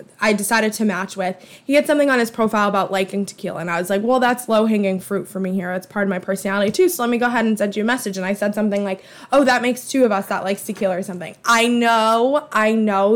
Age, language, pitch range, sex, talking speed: 20-39, English, 200-250 Hz, female, 285 wpm